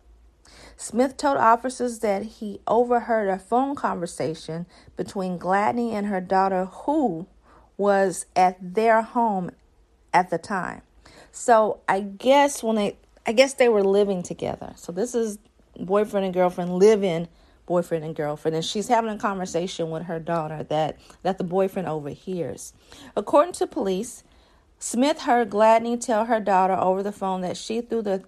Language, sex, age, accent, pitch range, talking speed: English, female, 40-59, American, 180-225 Hz, 155 wpm